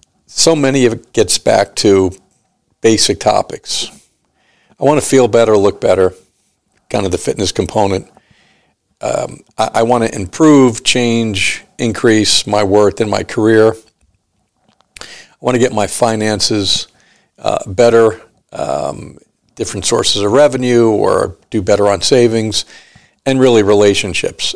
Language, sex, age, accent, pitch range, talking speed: English, male, 50-69, American, 100-115 Hz, 135 wpm